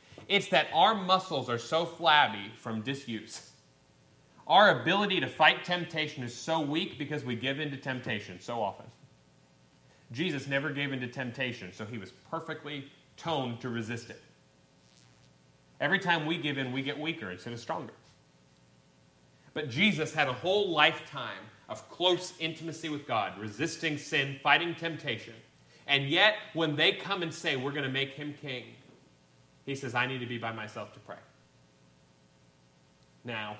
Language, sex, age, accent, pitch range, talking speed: English, male, 30-49, American, 105-150 Hz, 160 wpm